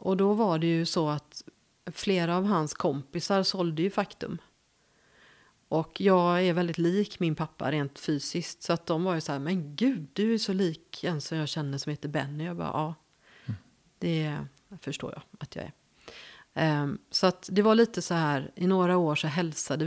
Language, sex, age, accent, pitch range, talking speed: Swedish, female, 30-49, native, 155-195 Hz, 200 wpm